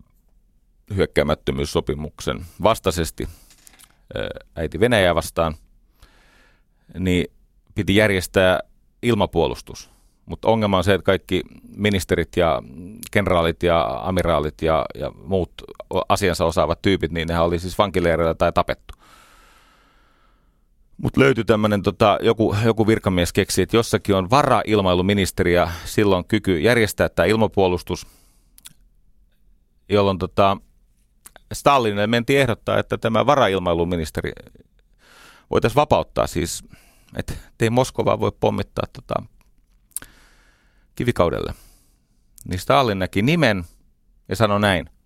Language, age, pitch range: Finnish, 30-49, 85-110 Hz